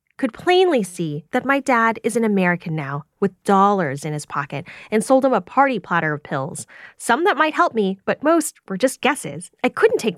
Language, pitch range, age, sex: English, 175-265 Hz, 10-29, female